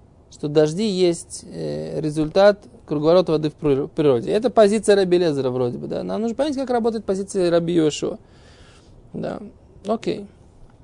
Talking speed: 125 wpm